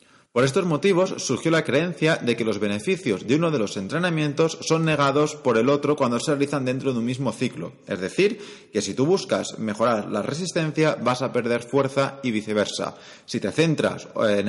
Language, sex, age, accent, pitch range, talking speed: Spanish, male, 30-49, Spanish, 120-160 Hz, 195 wpm